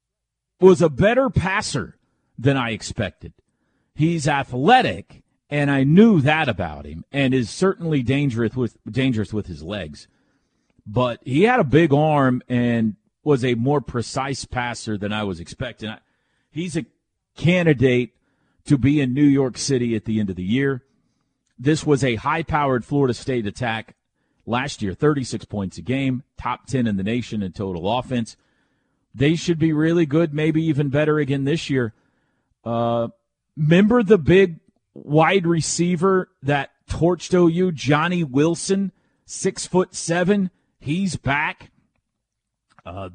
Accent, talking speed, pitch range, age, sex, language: American, 145 wpm, 120-165 Hz, 40-59, male, English